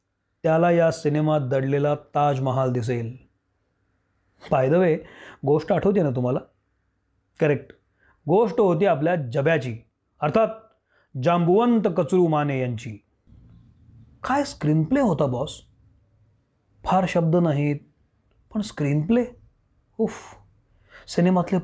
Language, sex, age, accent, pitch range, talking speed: Marathi, male, 30-49, native, 120-175 Hz, 90 wpm